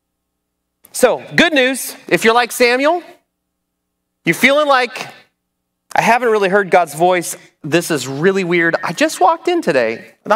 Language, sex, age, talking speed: English, male, 30-49, 150 wpm